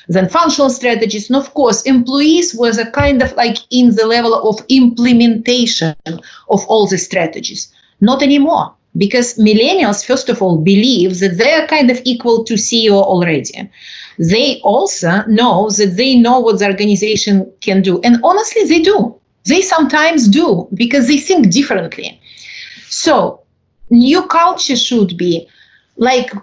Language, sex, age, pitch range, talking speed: English, female, 30-49, 200-260 Hz, 150 wpm